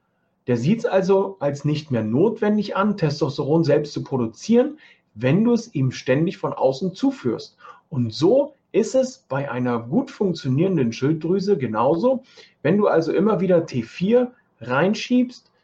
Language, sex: German, male